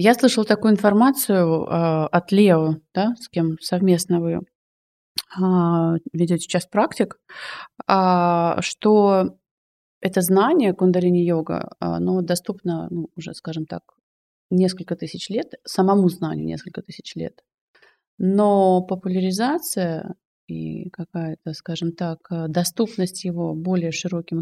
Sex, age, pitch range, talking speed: female, 30-49, 165-200 Hz, 105 wpm